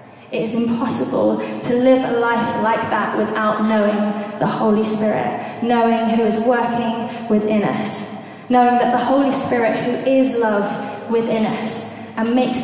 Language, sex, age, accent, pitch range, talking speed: English, female, 20-39, British, 205-235 Hz, 150 wpm